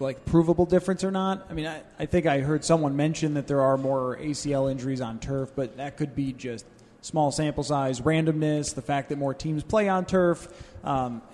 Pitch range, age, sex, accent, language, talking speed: 135-170 Hz, 30-49, male, American, English, 210 wpm